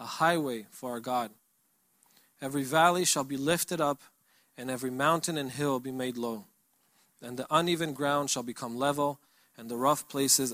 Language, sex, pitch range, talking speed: English, male, 130-165 Hz, 170 wpm